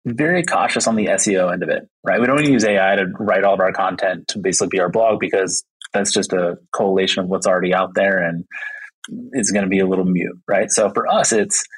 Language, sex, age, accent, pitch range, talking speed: English, male, 20-39, American, 95-110 Hz, 250 wpm